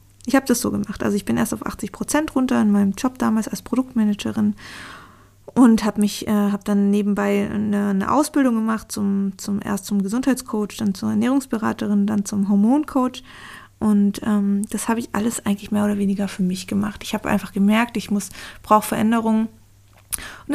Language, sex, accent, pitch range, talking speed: German, female, German, 205-245 Hz, 180 wpm